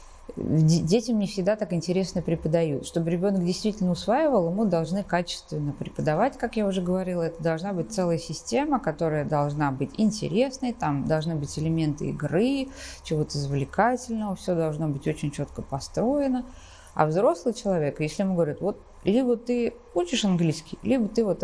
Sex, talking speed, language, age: female, 150 wpm, Russian, 20-39